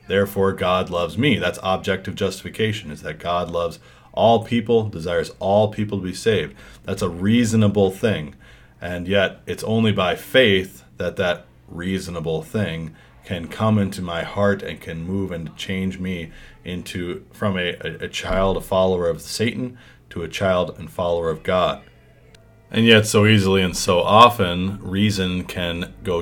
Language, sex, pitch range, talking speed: English, male, 90-105 Hz, 160 wpm